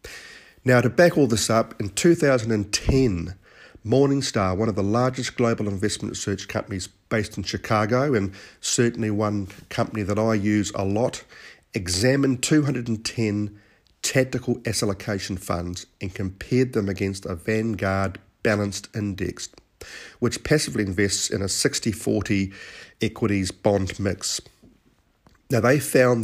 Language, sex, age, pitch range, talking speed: English, male, 50-69, 100-125 Hz, 125 wpm